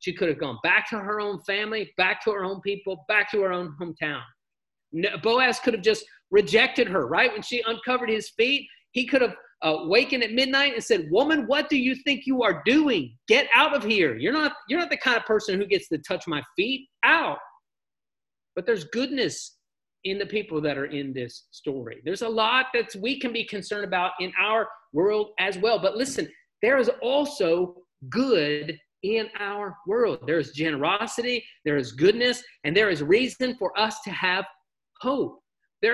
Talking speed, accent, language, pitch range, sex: 195 wpm, American, English, 190-260 Hz, male